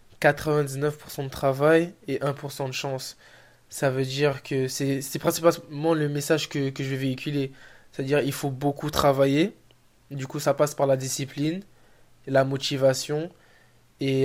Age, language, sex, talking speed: 20-39, French, male, 160 wpm